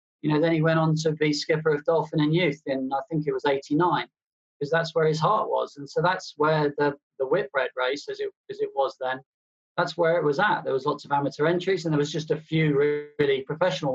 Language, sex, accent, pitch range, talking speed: English, male, British, 135-160 Hz, 250 wpm